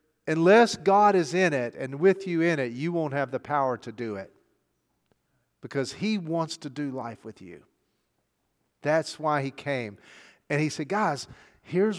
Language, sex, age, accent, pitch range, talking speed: English, male, 50-69, American, 120-165 Hz, 175 wpm